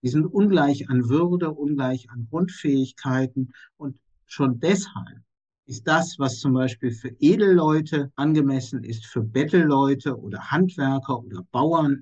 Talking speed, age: 130 wpm, 60-79